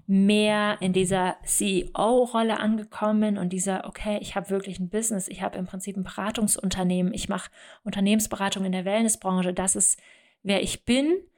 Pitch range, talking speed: 175-205 Hz, 160 wpm